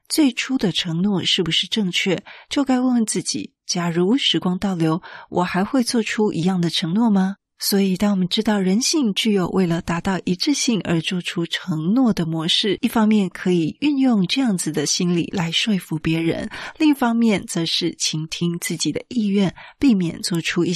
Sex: female